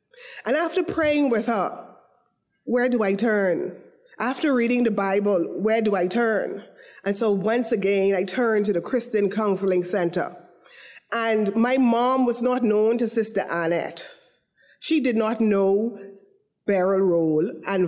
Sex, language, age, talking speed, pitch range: female, English, 20-39, 150 wpm, 195-255 Hz